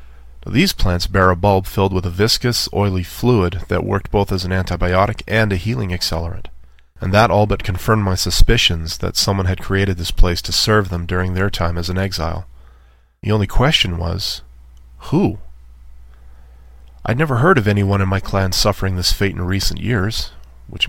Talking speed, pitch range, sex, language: 180 wpm, 75-105 Hz, male, English